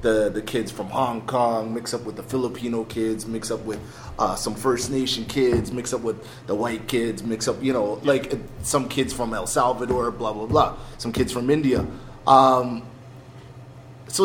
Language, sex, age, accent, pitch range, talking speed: English, male, 20-39, American, 115-135 Hz, 195 wpm